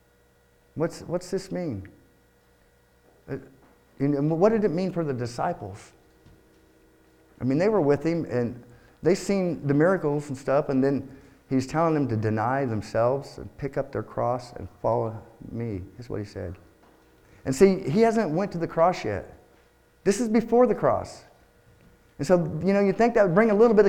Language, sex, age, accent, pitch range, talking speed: English, male, 50-69, American, 110-155 Hz, 180 wpm